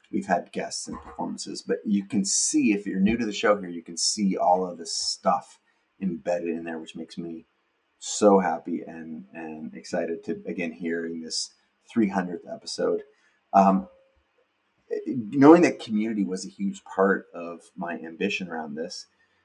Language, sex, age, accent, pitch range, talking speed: English, male, 30-49, American, 85-110 Hz, 165 wpm